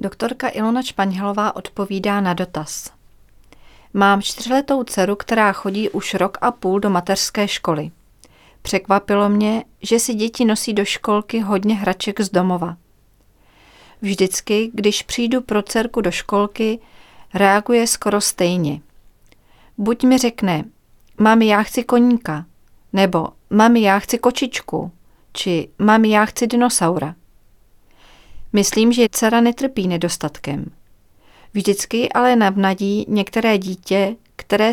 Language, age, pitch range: Czech, 40-59, 180-220 Hz